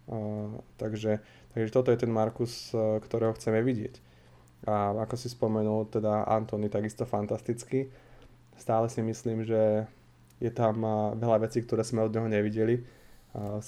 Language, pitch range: Slovak, 105-115 Hz